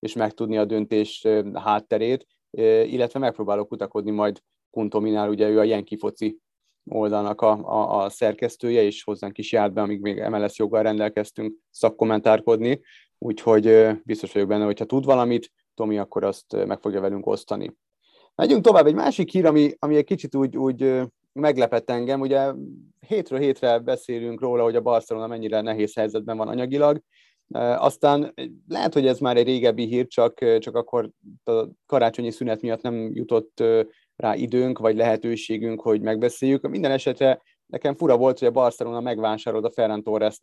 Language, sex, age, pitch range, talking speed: Hungarian, male, 30-49, 110-130 Hz, 160 wpm